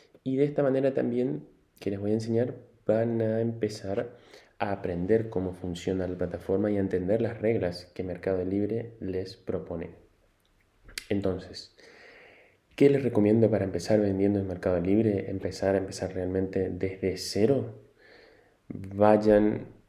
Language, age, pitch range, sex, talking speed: Spanish, 20-39, 95-110 Hz, male, 140 wpm